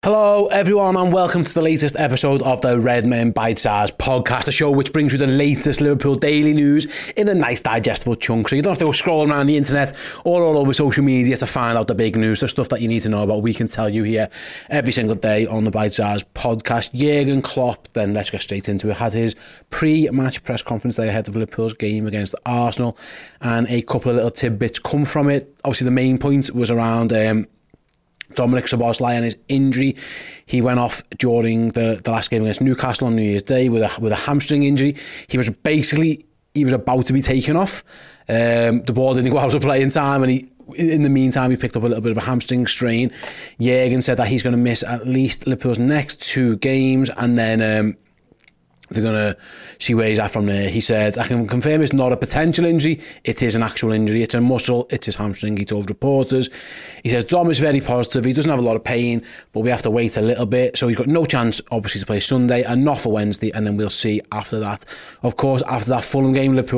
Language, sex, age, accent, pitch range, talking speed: English, male, 30-49, British, 115-140 Hz, 235 wpm